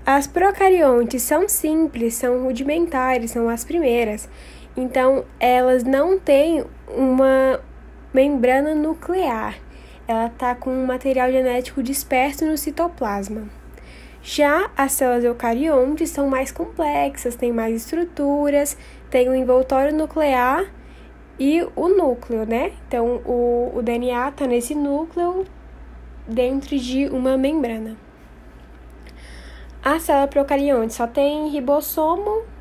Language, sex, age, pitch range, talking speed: Portuguese, female, 10-29, 235-295 Hz, 110 wpm